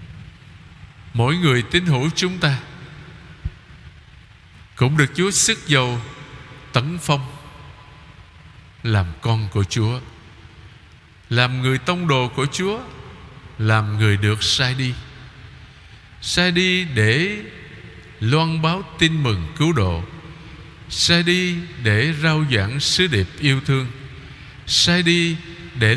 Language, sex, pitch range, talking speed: Vietnamese, male, 110-160 Hz, 115 wpm